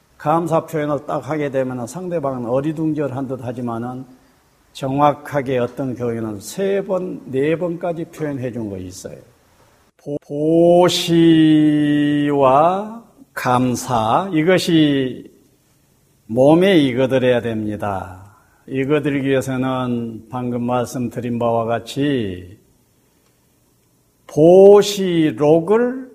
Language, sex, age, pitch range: Korean, male, 50-69, 125-165 Hz